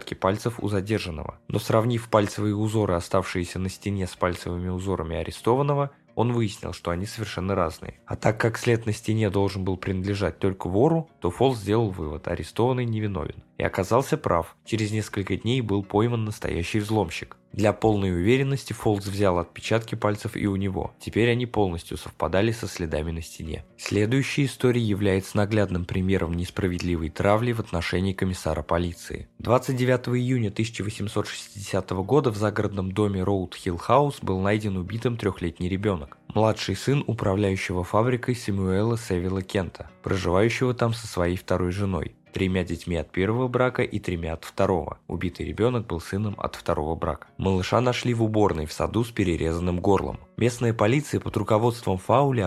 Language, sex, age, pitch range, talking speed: Russian, male, 20-39, 90-115 Hz, 155 wpm